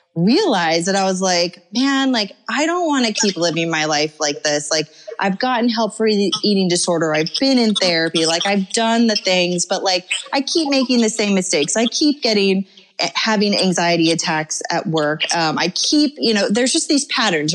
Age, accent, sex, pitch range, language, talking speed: 30-49, American, female, 180-230 Hz, English, 200 wpm